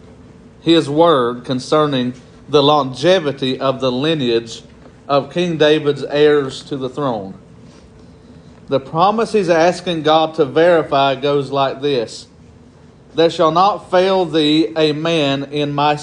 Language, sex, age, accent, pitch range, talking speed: English, male, 40-59, American, 140-170 Hz, 125 wpm